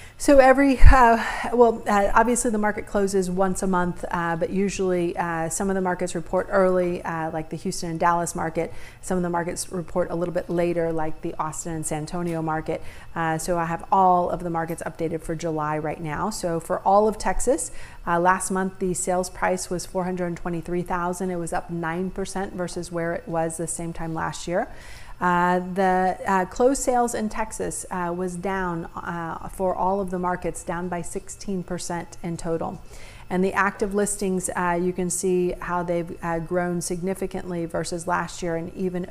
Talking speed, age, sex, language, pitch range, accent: 190 wpm, 40-59, female, English, 170-190 Hz, American